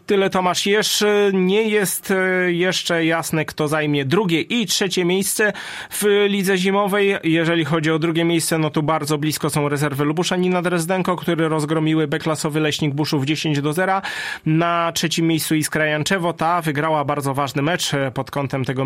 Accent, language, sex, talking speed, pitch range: native, Polish, male, 165 wpm, 135-170 Hz